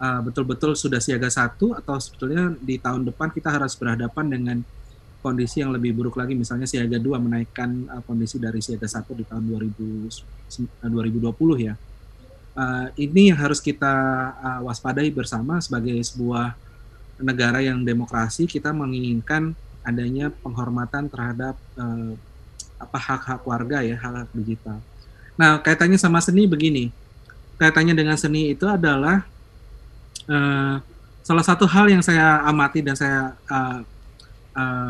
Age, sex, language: 30-49, male, Indonesian